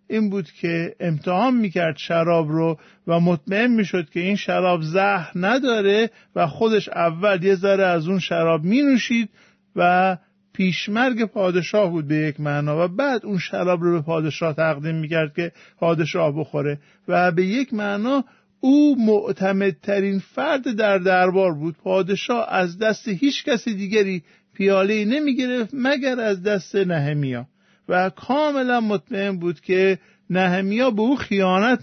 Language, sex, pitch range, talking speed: Persian, male, 175-215 Hz, 140 wpm